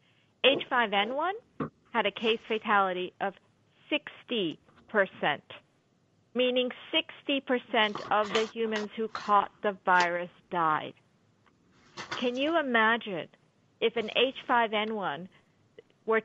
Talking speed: 95 wpm